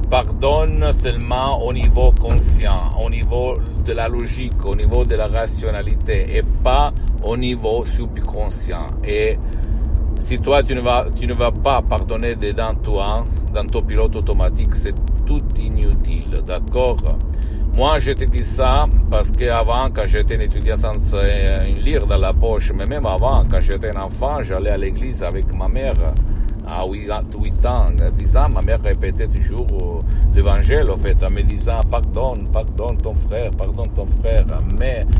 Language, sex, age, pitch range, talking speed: Italian, male, 50-69, 80-105 Hz, 160 wpm